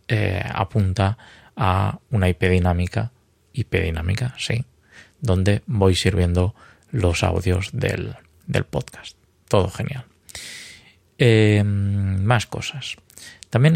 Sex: male